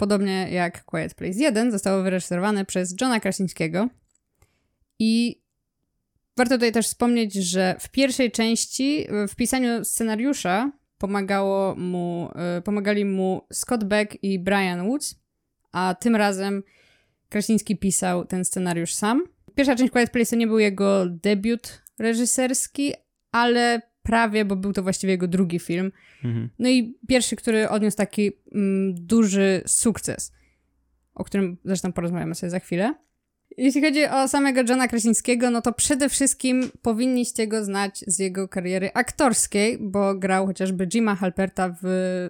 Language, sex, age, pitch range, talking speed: Polish, female, 20-39, 185-235 Hz, 135 wpm